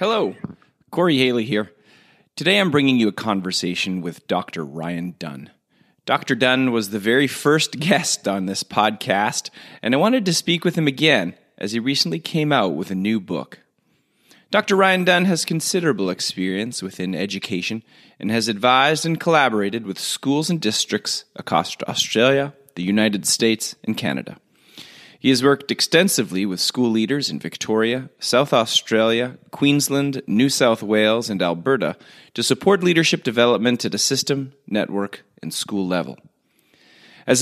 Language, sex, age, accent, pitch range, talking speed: English, male, 30-49, American, 100-145 Hz, 150 wpm